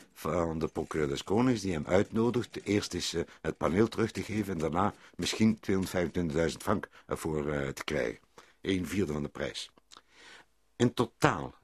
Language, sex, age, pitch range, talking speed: Dutch, male, 60-79, 100-150 Hz, 155 wpm